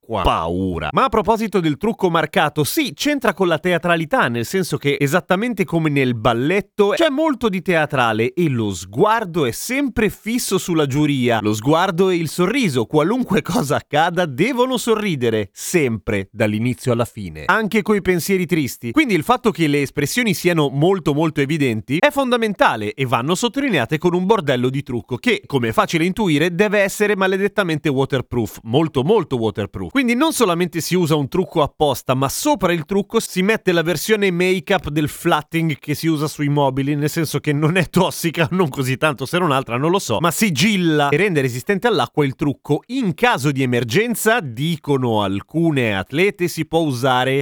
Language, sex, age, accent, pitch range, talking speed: Italian, male, 30-49, native, 135-200 Hz, 175 wpm